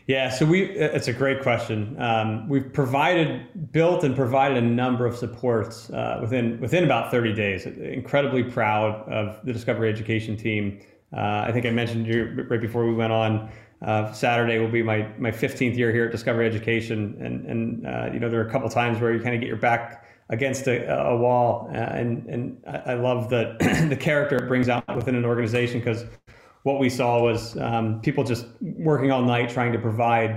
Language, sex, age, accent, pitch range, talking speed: English, male, 30-49, American, 115-125 Hz, 205 wpm